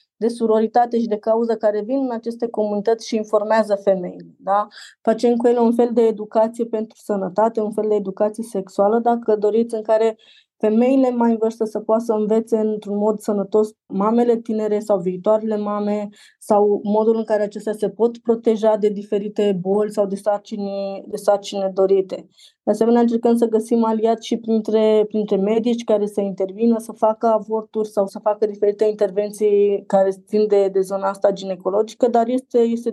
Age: 20-39